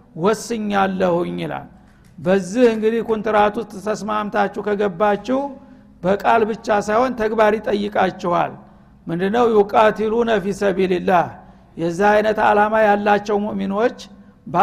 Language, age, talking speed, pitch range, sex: Amharic, 60-79, 75 wpm, 200-220 Hz, male